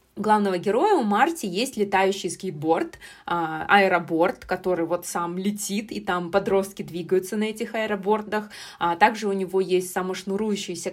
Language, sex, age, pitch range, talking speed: Russian, female, 20-39, 180-215 Hz, 130 wpm